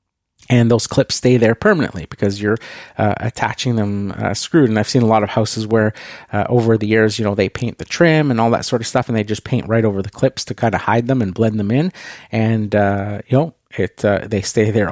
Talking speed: 255 wpm